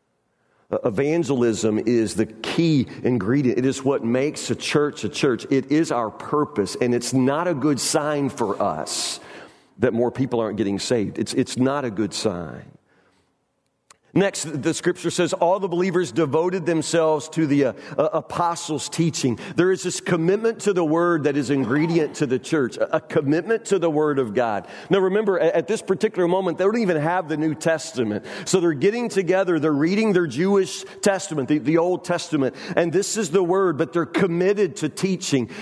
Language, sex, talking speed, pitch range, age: English, male, 185 wpm, 155-200 Hz, 40-59